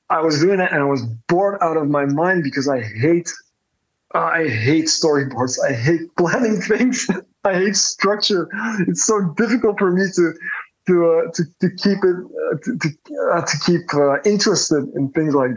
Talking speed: 185 wpm